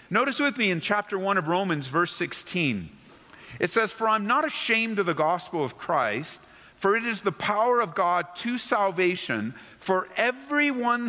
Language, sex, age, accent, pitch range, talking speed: English, male, 50-69, American, 170-235 Hz, 175 wpm